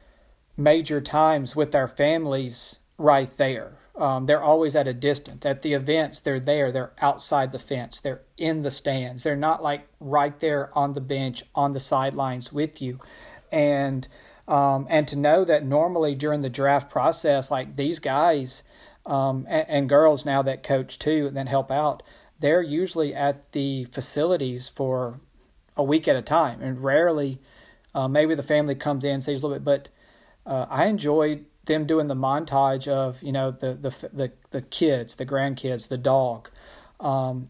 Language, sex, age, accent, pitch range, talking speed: English, male, 40-59, American, 135-150 Hz, 175 wpm